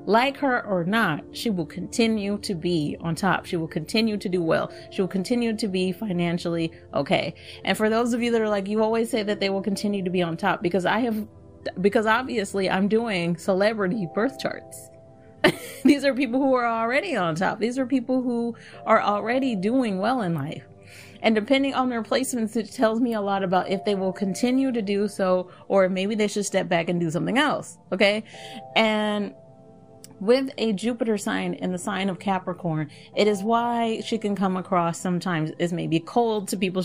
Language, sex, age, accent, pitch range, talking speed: English, female, 30-49, American, 175-225 Hz, 200 wpm